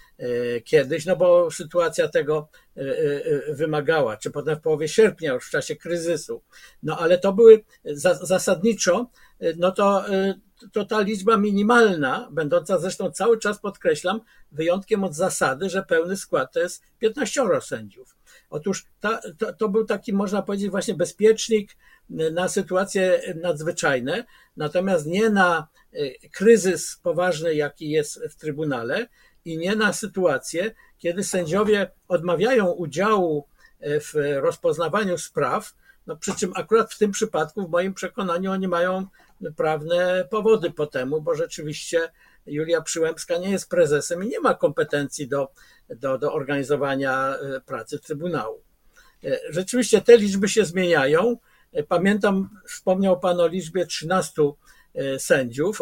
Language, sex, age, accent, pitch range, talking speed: Polish, male, 50-69, native, 165-220 Hz, 125 wpm